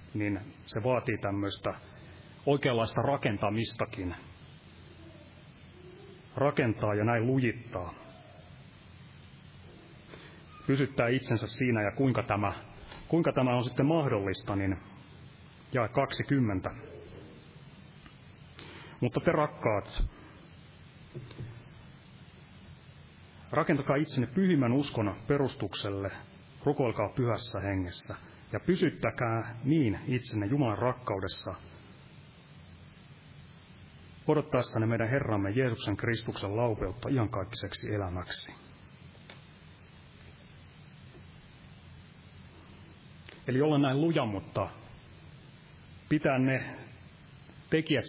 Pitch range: 105-140 Hz